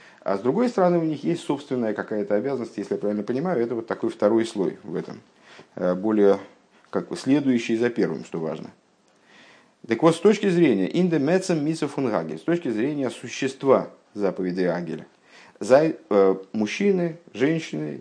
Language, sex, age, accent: Russian, male, 50-69, native